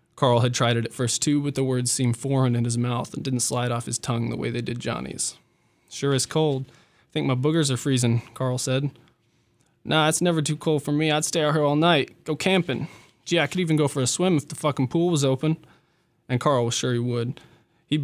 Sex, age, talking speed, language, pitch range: male, 20-39, 245 wpm, English, 120-135 Hz